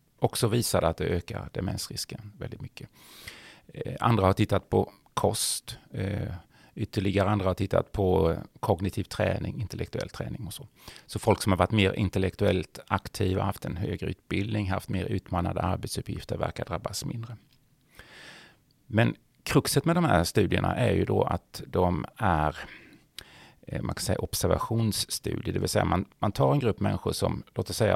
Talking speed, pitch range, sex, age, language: 150 wpm, 95-115 Hz, male, 30-49, Swedish